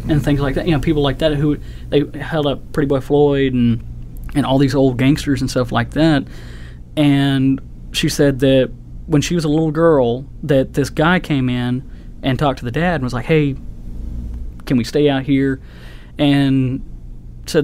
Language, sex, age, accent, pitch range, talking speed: English, male, 20-39, American, 120-145 Hz, 195 wpm